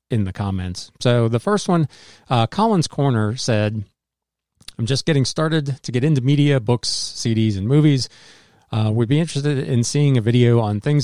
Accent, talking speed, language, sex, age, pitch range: American, 180 wpm, English, male, 40-59, 105-140 Hz